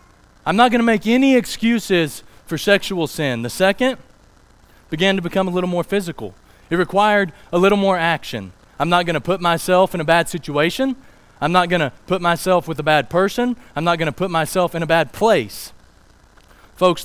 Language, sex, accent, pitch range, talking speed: English, male, American, 110-180 Hz, 195 wpm